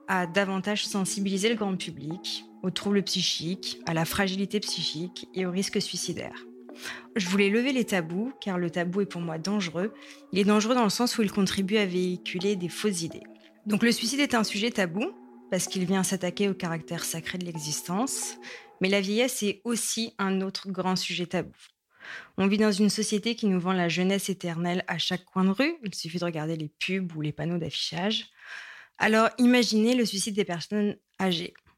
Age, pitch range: 20-39, 175-210 Hz